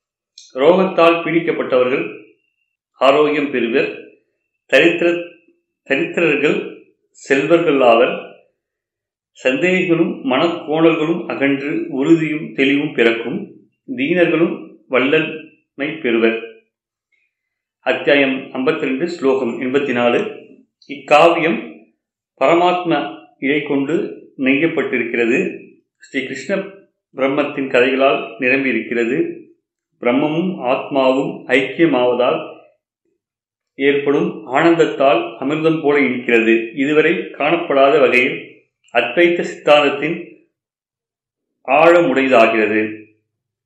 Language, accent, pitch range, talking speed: Tamil, native, 130-175 Hz, 65 wpm